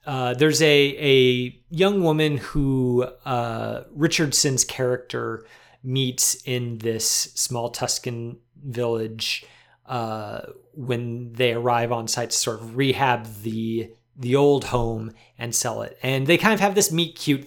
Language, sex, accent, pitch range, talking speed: English, male, American, 120-150 Hz, 135 wpm